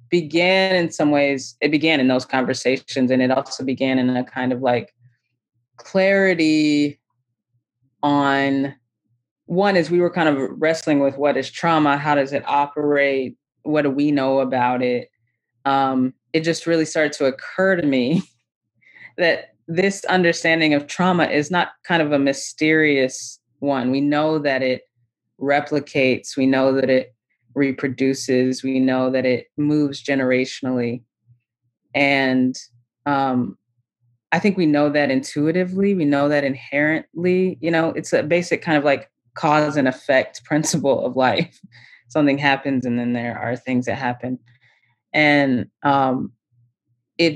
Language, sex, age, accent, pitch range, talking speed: English, female, 20-39, American, 125-155 Hz, 145 wpm